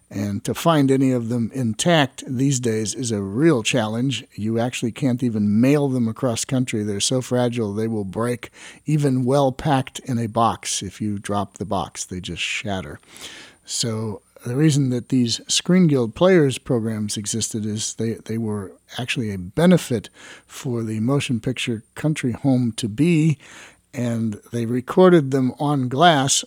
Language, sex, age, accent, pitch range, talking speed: English, male, 50-69, American, 110-135 Hz, 160 wpm